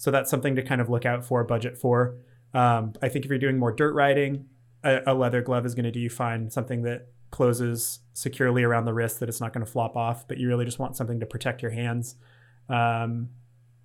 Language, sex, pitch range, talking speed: English, male, 120-135 Hz, 240 wpm